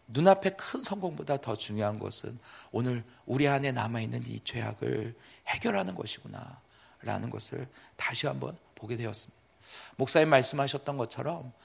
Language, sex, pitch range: Korean, male, 115-160 Hz